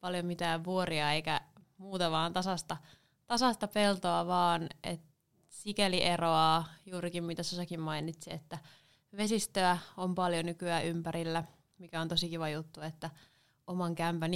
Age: 20-39